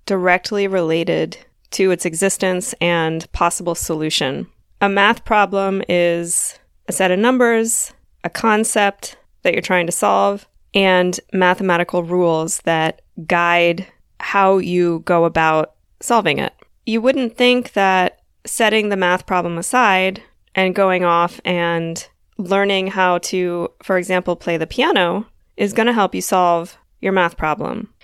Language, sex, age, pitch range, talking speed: English, female, 20-39, 170-195 Hz, 135 wpm